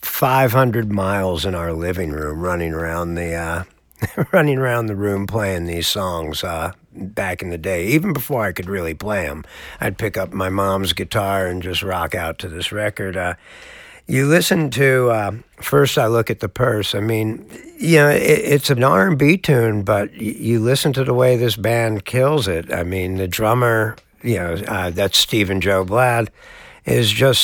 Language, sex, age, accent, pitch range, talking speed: English, male, 60-79, American, 95-125 Hz, 190 wpm